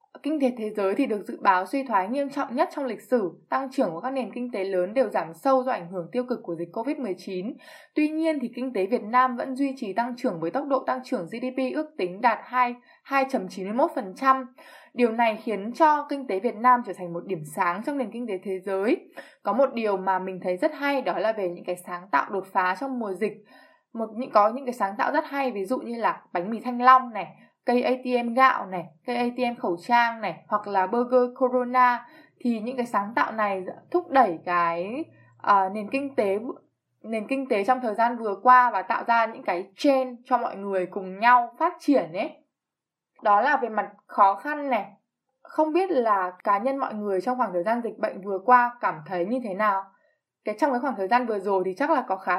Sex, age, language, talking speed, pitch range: female, 20-39, Vietnamese, 230 wpm, 200-265 Hz